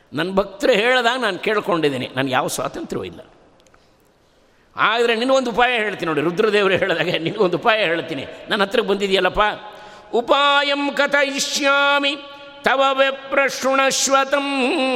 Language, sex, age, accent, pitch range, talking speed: Kannada, male, 50-69, native, 190-275 Hz, 105 wpm